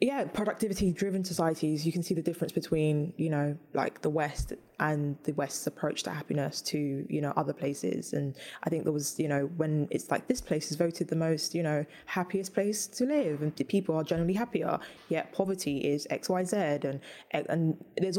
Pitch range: 150-175 Hz